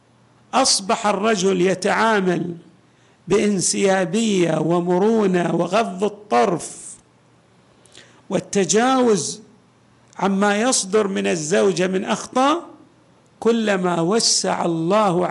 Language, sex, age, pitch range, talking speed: Arabic, male, 50-69, 185-255 Hz, 65 wpm